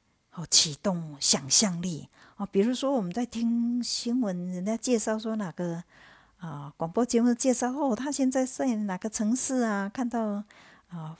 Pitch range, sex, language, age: 175-240 Hz, female, Chinese, 50-69